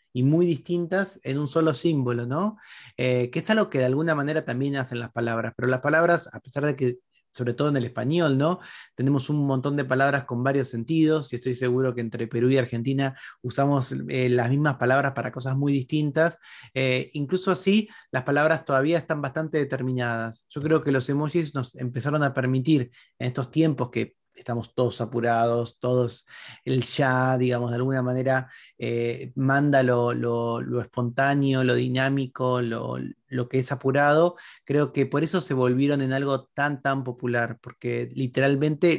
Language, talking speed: Spanish, 175 wpm